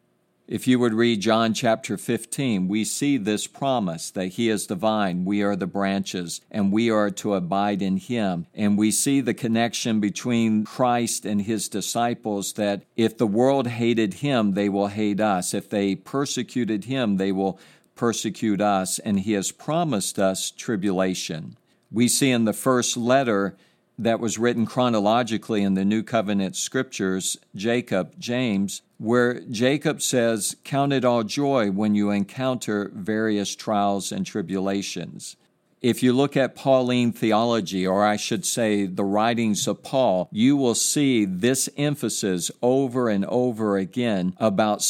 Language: English